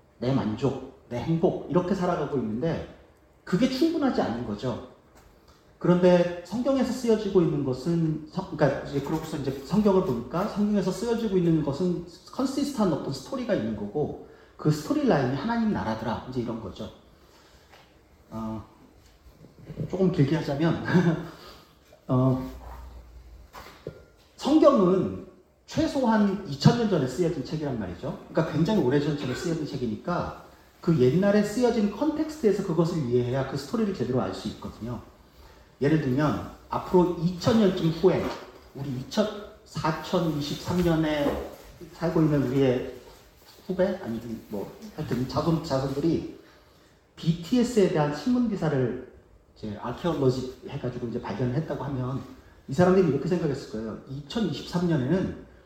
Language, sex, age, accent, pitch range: Korean, male, 40-59, native, 125-185 Hz